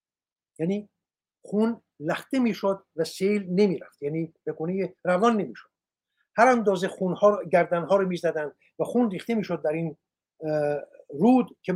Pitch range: 170-225 Hz